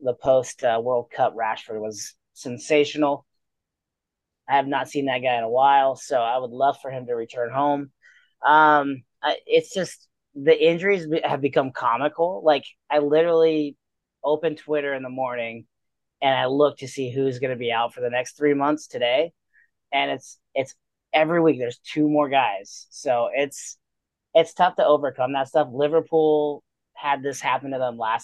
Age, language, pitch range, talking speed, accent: 30-49, English, 130-160 Hz, 180 wpm, American